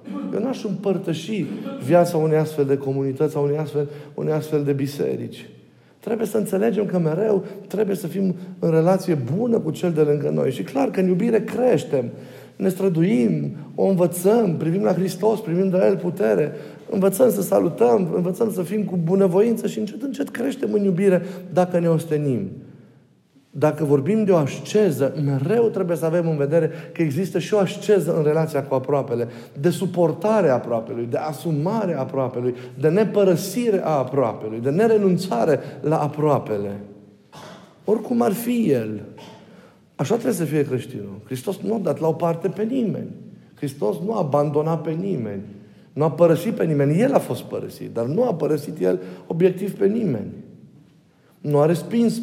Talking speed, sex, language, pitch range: 165 wpm, male, Romanian, 145-205 Hz